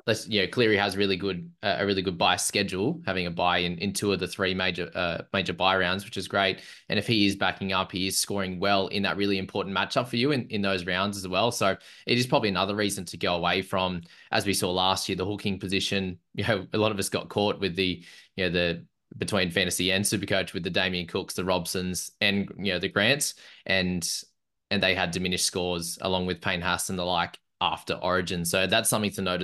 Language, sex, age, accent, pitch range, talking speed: English, male, 20-39, Australian, 95-105 Hz, 245 wpm